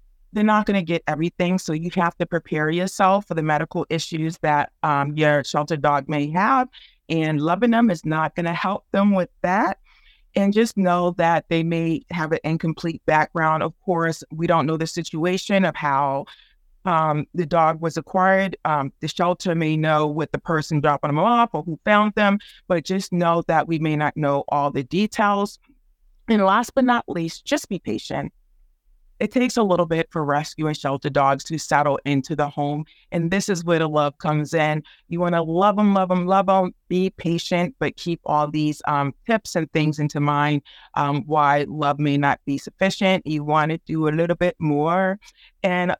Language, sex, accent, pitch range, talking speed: English, female, American, 150-190 Hz, 200 wpm